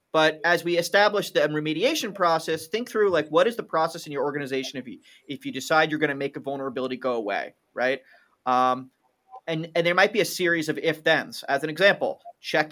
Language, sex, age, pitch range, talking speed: English, male, 30-49, 140-160 Hz, 210 wpm